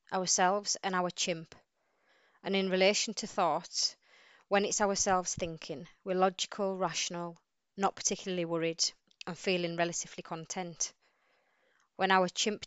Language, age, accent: English, 20-39, British